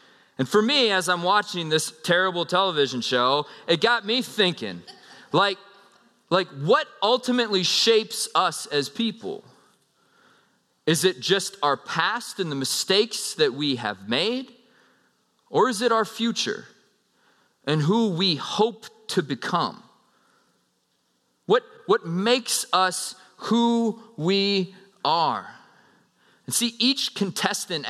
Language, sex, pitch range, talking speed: English, male, 165-230 Hz, 120 wpm